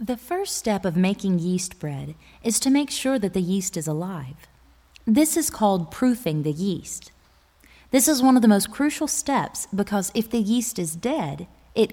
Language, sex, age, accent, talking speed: English, female, 20-39, American, 185 wpm